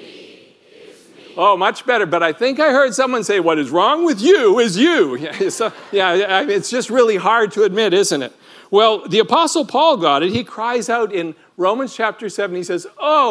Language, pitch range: English, 210-315 Hz